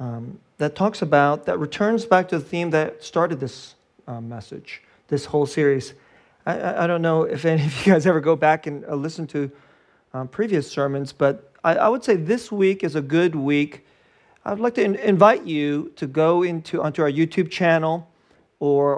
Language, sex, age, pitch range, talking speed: English, male, 40-59, 150-205 Hz, 200 wpm